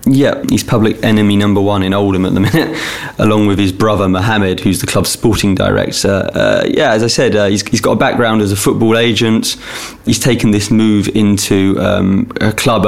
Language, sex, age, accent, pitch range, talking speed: English, male, 20-39, British, 95-105 Hz, 210 wpm